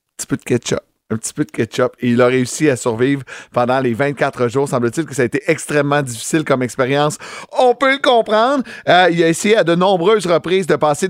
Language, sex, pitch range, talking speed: French, male, 130-180 Hz, 215 wpm